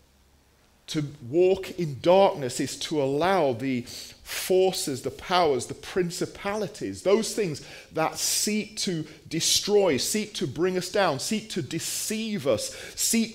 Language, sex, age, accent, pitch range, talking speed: English, male, 40-59, British, 135-195 Hz, 130 wpm